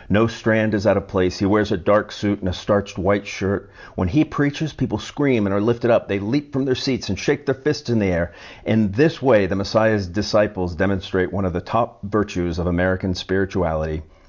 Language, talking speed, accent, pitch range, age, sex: English, 220 wpm, American, 90-115 Hz, 50-69, male